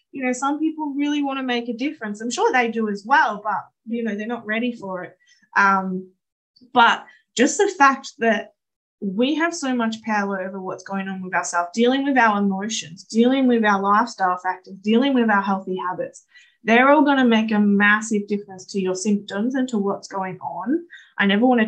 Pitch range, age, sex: 200-255 Hz, 20-39, female